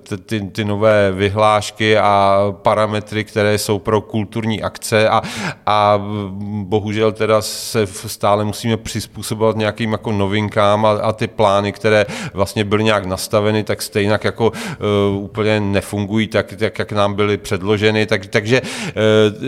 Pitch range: 100-110 Hz